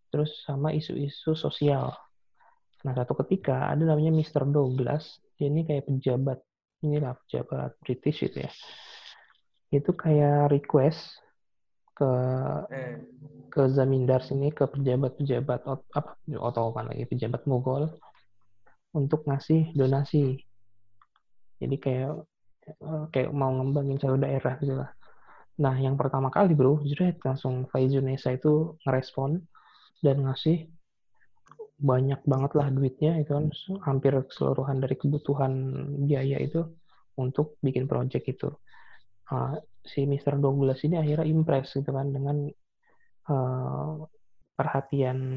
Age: 20-39